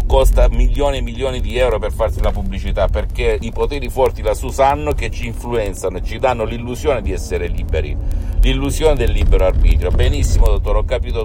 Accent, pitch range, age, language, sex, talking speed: native, 80-110 Hz, 50-69, Italian, male, 185 wpm